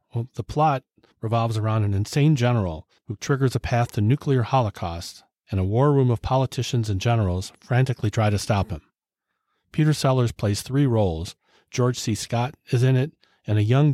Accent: American